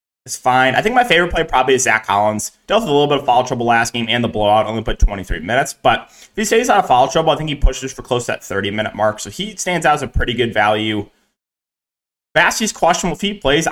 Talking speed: 265 wpm